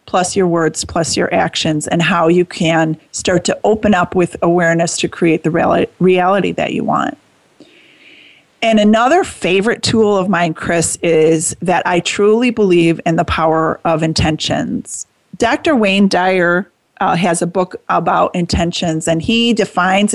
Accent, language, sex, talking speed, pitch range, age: American, English, female, 155 wpm, 170-200 Hz, 30-49